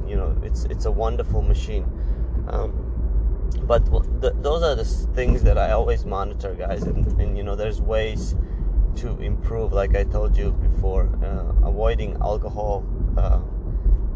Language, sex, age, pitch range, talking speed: English, male, 20-39, 80-100 Hz, 155 wpm